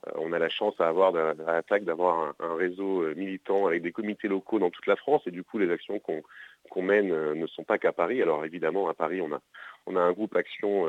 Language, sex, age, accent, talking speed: French, male, 30-49, French, 240 wpm